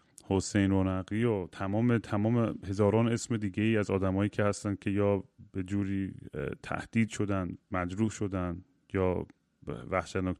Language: Persian